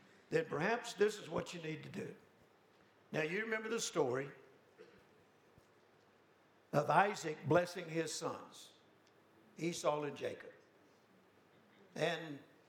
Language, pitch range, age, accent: English, 155-195 Hz, 60-79, American